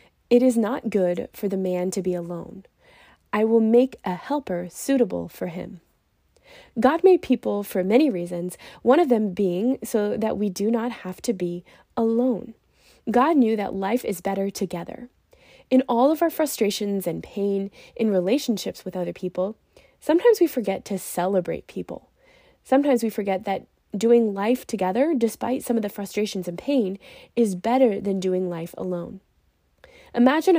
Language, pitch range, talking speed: English, 185-250 Hz, 165 wpm